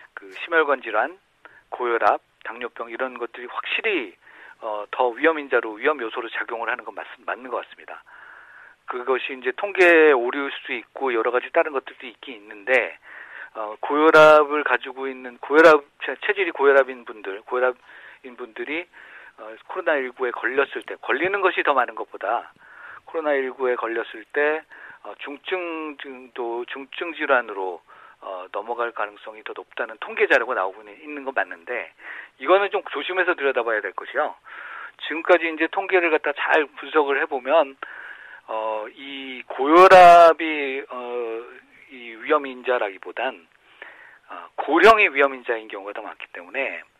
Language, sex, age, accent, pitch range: Korean, male, 40-59, native, 125-165 Hz